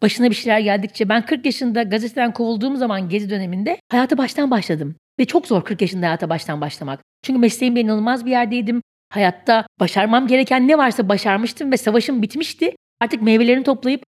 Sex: female